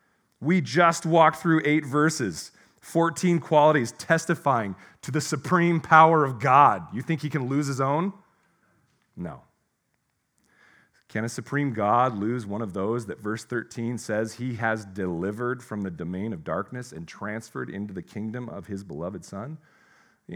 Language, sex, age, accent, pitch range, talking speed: English, male, 40-59, American, 110-155 Hz, 155 wpm